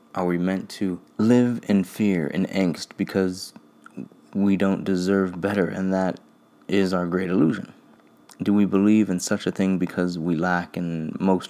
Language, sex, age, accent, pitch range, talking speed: English, male, 20-39, American, 85-100 Hz, 165 wpm